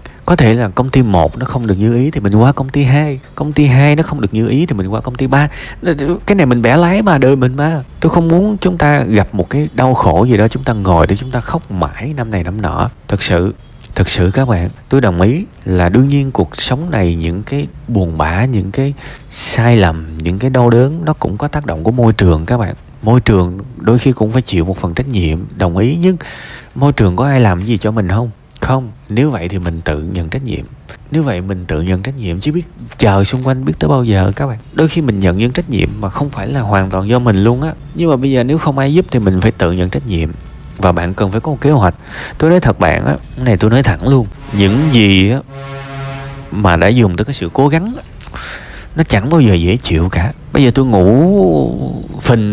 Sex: male